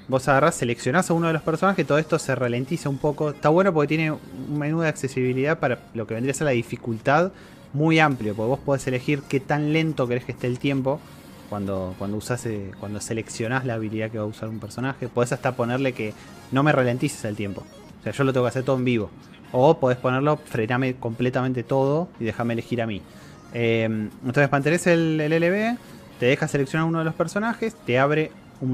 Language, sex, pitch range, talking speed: Spanish, male, 115-150 Hz, 215 wpm